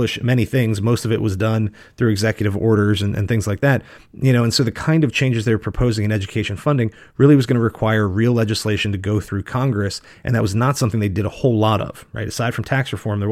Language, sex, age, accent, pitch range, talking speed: English, male, 30-49, American, 110-135 Hz, 250 wpm